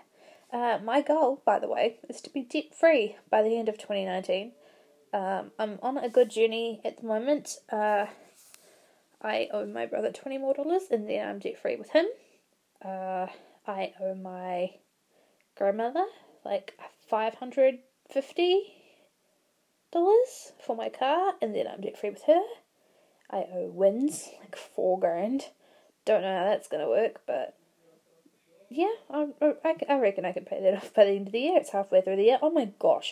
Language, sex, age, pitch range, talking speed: English, female, 10-29, 200-295 Hz, 165 wpm